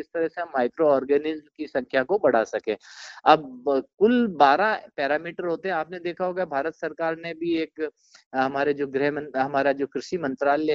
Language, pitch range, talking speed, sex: Punjabi, 135-175 Hz, 175 wpm, male